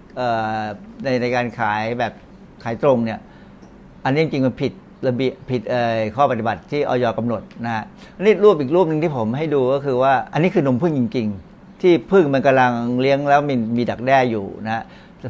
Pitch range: 125-170 Hz